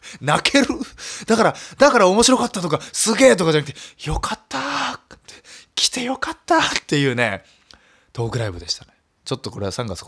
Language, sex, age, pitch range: Japanese, male, 20-39, 100-135 Hz